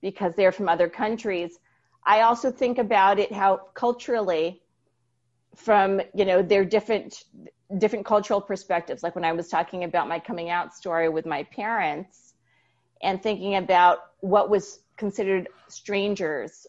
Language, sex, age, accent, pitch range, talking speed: English, female, 30-49, American, 175-220 Hz, 145 wpm